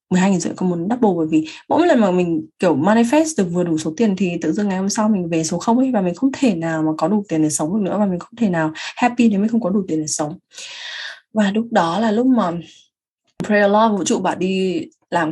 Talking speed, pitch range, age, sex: 265 wpm, 170-220 Hz, 20-39, female